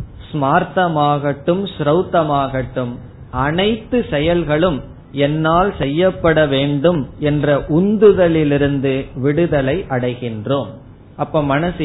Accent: native